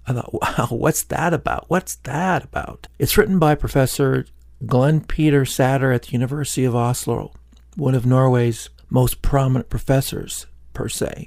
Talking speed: 155 wpm